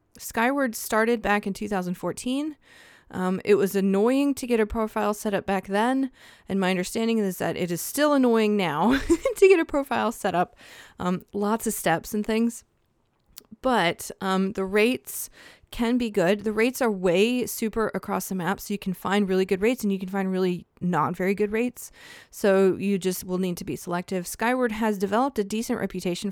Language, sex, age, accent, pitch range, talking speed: English, female, 20-39, American, 185-225 Hz, 190 wpm